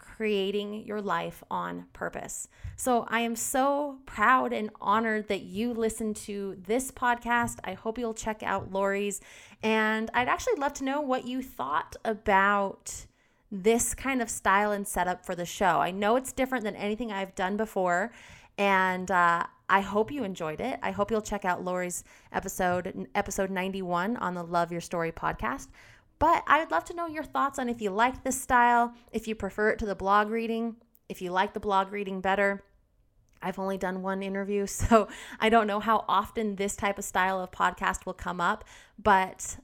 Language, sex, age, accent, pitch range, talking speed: English, female, 20-39, American, 190-230 Hz, 185 wpm